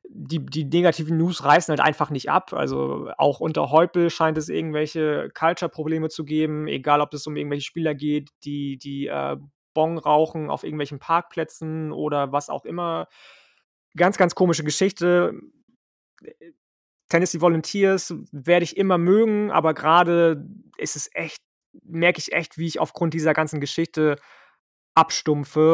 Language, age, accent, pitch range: German, 20-39, German, 150-170 Hz